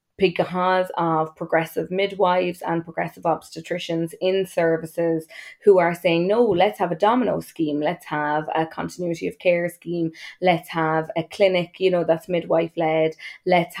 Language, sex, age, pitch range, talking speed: English, female, 20-39, 165-185 Hz, 150 wpm